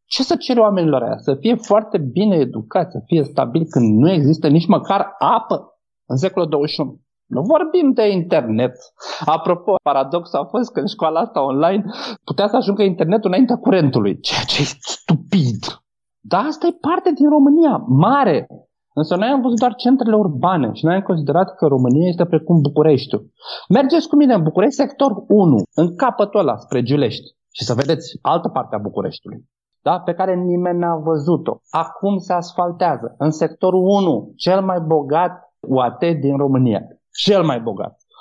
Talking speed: 170 wpm